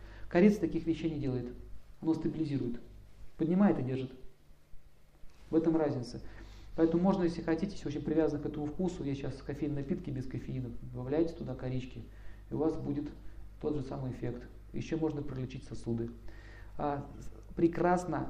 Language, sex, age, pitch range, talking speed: Russian, male, 40-59, 110-160 Hz, 150 wpm